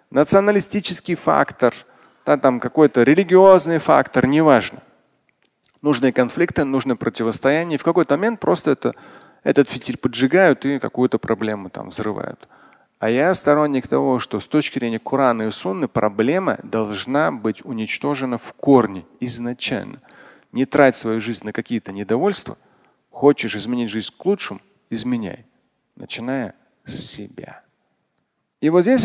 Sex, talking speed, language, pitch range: male, 120 wpm, Russian, 115-145 Hz